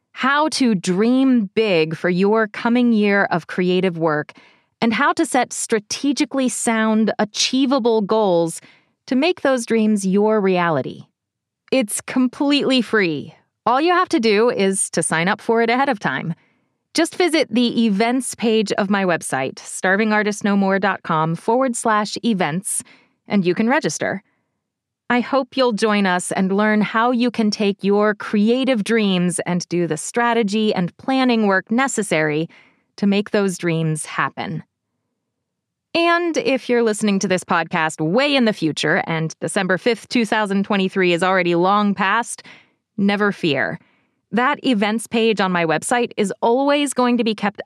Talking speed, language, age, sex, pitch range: 150 wpm, English, 30-49, female, 185-240 Hz